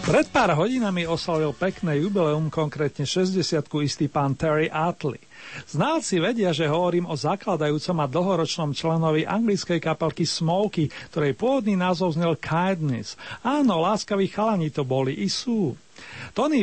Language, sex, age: Slovak, male, 40-59